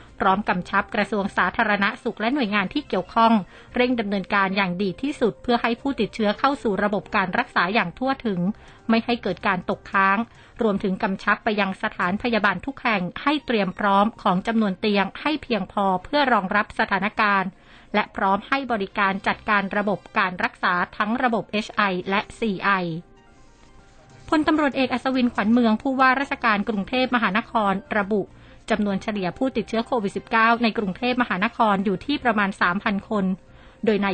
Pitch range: 195-235 Hz